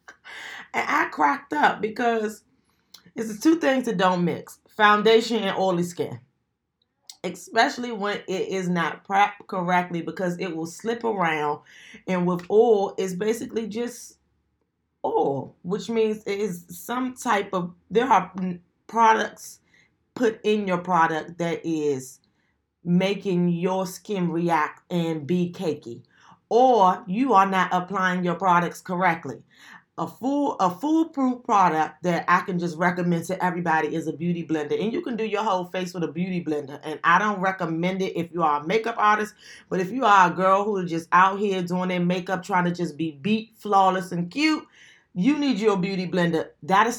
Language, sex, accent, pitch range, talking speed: English, female, American, 165-210 Hz, 170 wpm